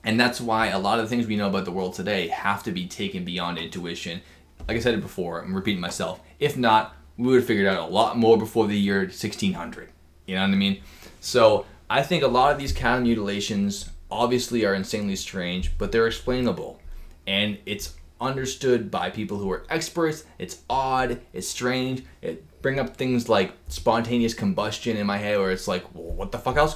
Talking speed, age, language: 205 wpm, 20-39, English